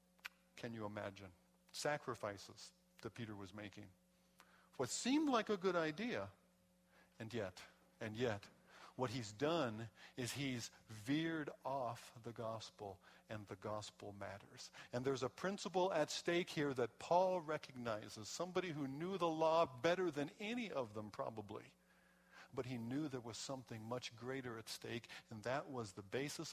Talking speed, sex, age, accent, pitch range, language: 150 wpm, male, 50-69, American, 110-175 Hz, English